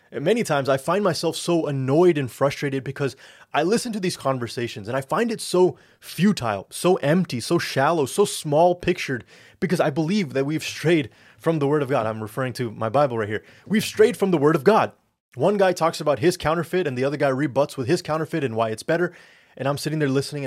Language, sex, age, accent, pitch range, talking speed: English, male, 20-39, American, 130-170 Hz, 225 wpm